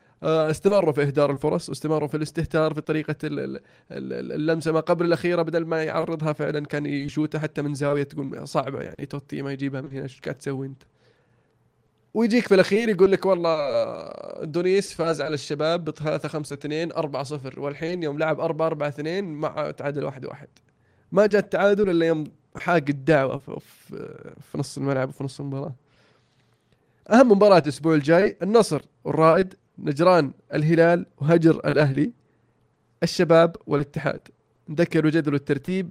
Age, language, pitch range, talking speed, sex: 20-39, Arabic, 145-170 Hz, 135 wpm, male